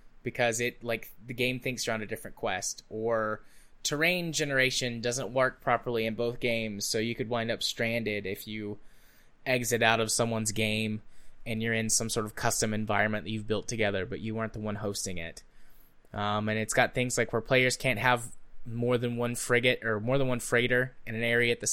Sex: male